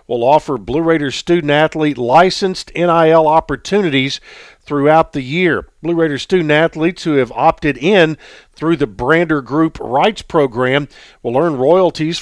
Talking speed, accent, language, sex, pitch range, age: 135 wpm, American, English, male, 135-165 Hz, 50-69